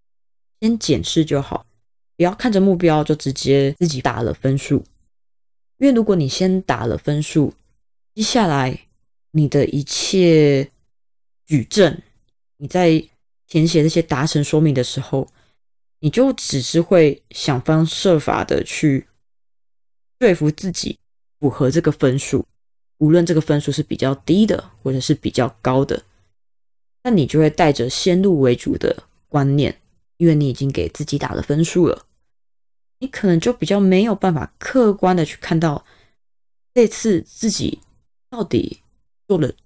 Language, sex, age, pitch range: Chinese, female, 20-39, 120-165 Hz